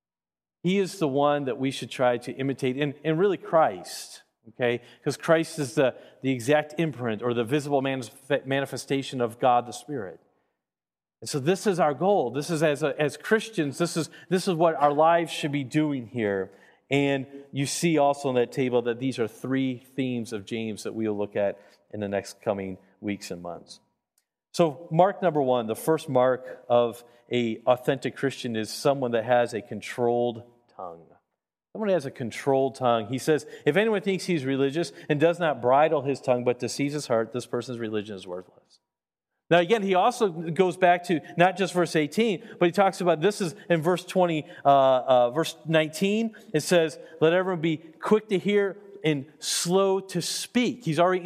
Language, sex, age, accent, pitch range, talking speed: English, male, 40-59, American, 125-180 Hz, 185 wpm